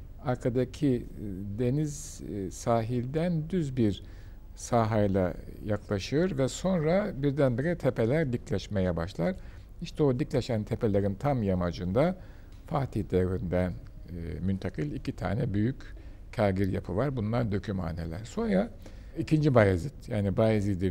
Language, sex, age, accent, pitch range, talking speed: Turkish, male, 60-79, native, 95-130 Hz, 100 wpm